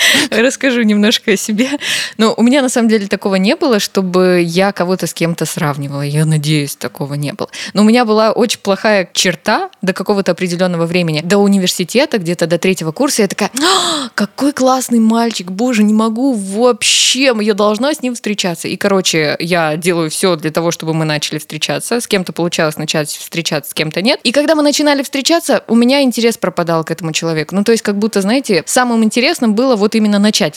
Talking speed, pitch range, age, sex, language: 190 wpm, 165-230 Hz, 20-39, female, Russian